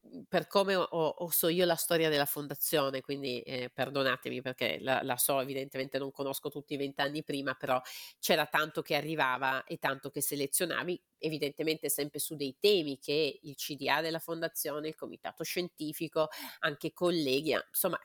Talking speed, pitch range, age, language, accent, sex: 160 wpm, 135-165 Hz, 40-59, Italian, native, female